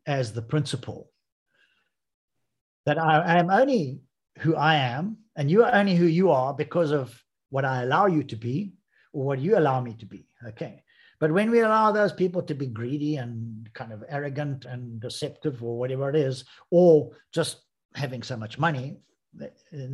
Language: English